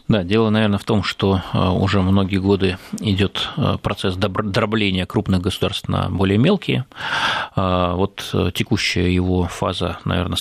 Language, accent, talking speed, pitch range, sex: Russian, native, 125 wpm, 95-115 Hz, male